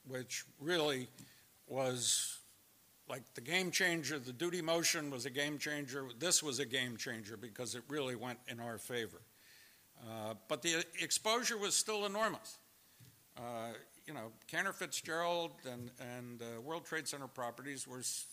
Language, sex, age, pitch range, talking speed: English, male, 60-79, 120-150 Hz, 140 wpm